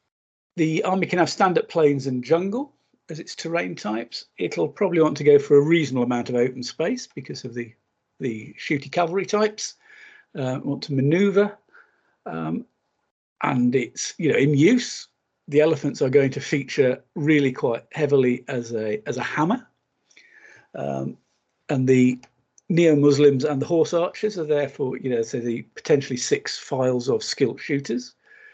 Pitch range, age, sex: 125-165 Hz, 50-69, male